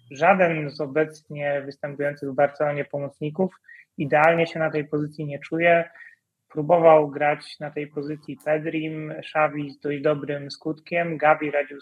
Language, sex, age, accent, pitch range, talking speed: Polish, male, 30-49, native, 140-155 Hz, 135 wpm